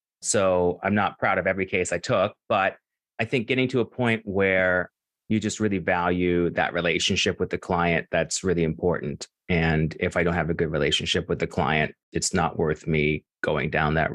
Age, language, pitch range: 30-49, English, 90-120 Hz